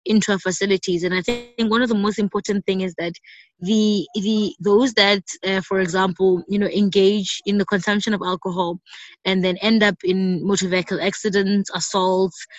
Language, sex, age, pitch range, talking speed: English, female, 20-39, 185-210 Hz, 180 wpm